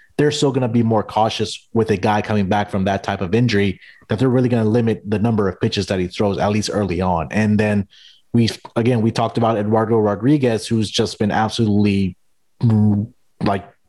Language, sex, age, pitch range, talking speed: English, male, 30-49, 100-115 Hz, 205 wpm